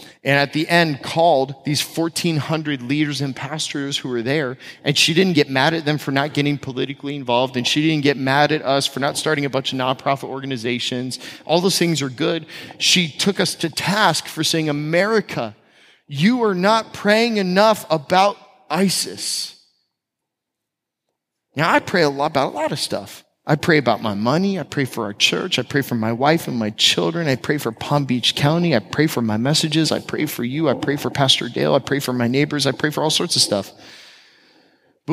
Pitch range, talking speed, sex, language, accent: 125-165 Hz, 205 wpm, male, English, American